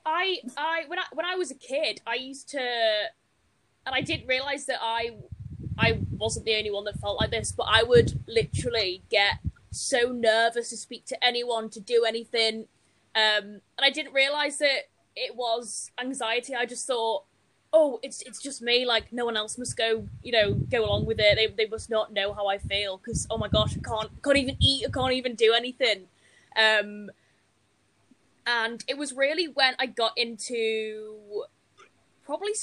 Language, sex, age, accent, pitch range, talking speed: English, female, 20-39, British, 220-275 Hz, 190 wpm